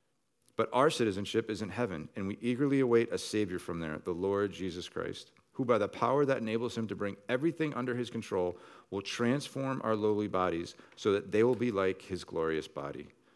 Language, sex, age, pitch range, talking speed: English, male, 40-59, 90-115 Hz, 200 wpm